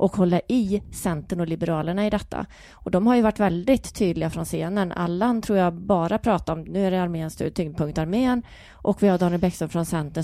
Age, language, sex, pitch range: 30-49, Swedish, female, 165-205 Hz